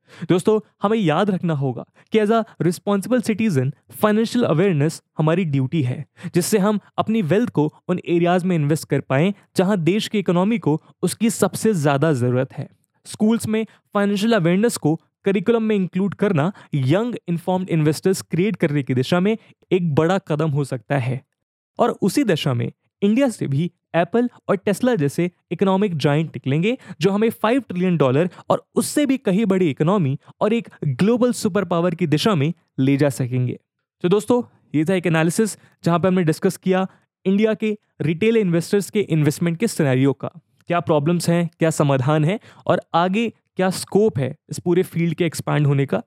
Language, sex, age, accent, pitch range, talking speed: English, male, 20-39, Indian, 150-205 Hz, 145 wpm